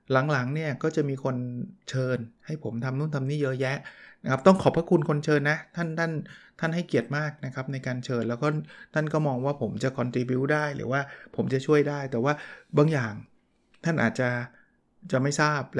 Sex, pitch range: male, 120-150 Hz